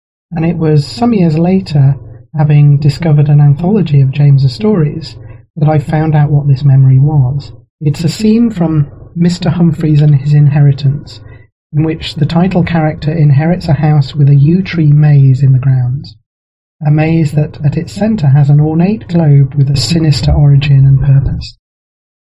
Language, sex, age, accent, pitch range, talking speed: English, male, 40-59, British, 135-160 Hz, 165 wpm